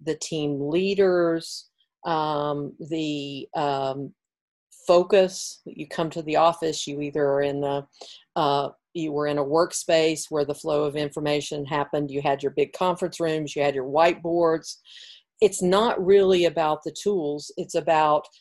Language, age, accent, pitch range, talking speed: English, 50-69, American, 150-175 Hz, 155 wpm